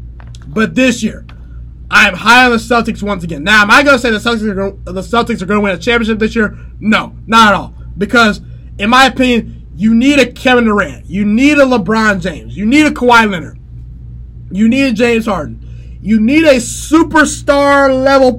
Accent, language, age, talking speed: American, English, 20-39, 195 wpm